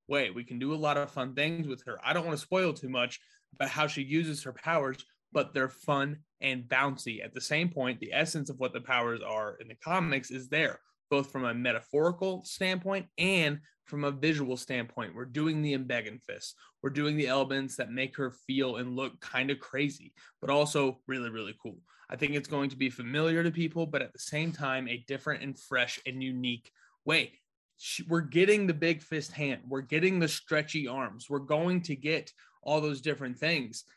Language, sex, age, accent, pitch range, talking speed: English, male, 20-39, American, 130-160 Hz, 205 wpm